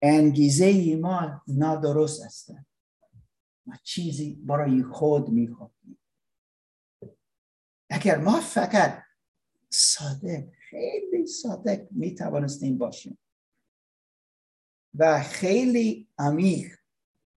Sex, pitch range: male, 140-220 Hz